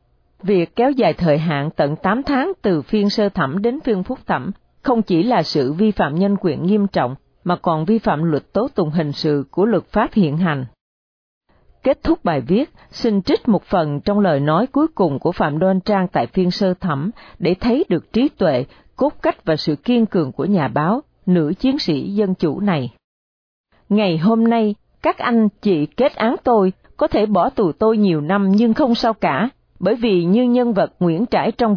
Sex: female